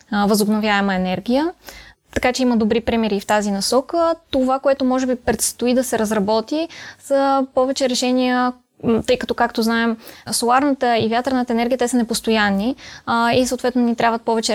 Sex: female